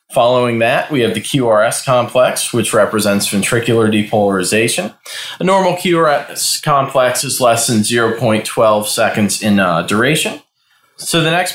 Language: English